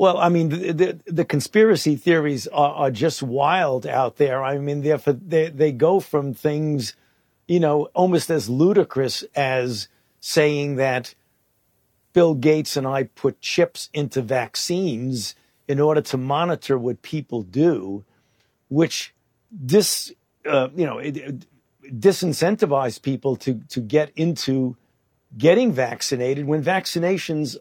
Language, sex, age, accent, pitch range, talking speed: English, male, 50-69, American, 130-170 Hz, 135 wpm